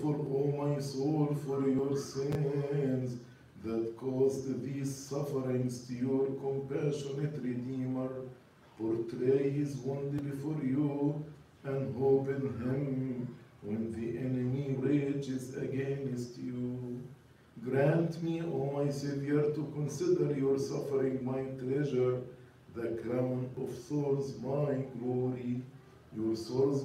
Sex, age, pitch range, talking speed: male, 50-69, 125-140 Hz, 110 wpm